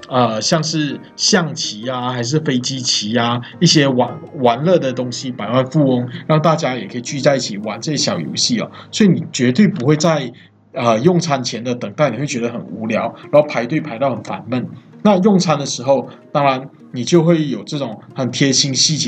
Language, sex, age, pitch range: English, male, 20-39, 125-160 Hz